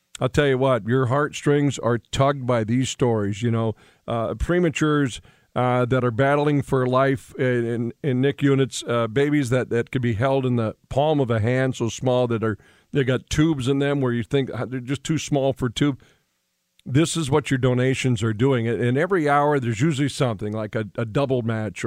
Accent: American